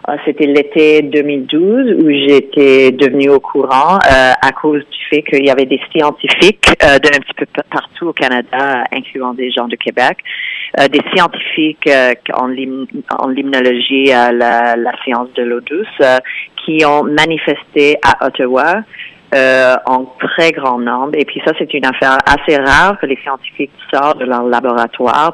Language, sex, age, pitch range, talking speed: French, female, 40-59, 130-150 Hz, 170 wpm